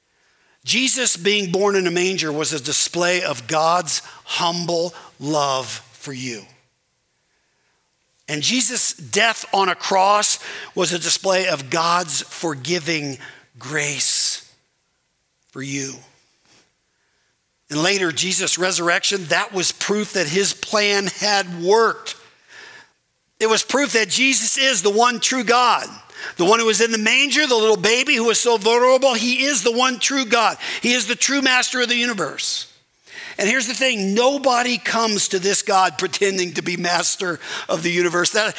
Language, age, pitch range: English, 50-69, 165-220 Hz